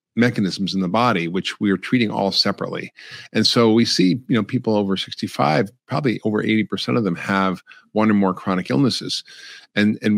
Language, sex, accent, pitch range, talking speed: English, male, American, 95-120 Hz, 195 wpm